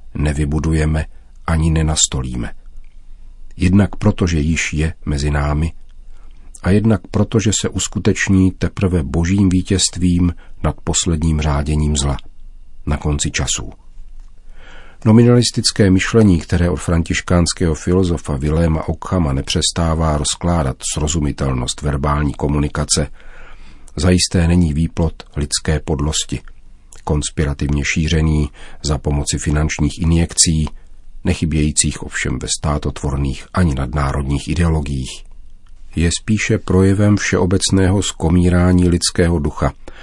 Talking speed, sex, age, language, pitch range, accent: 95 wpm, male, 50-69, Czech, 75-90 Hz, native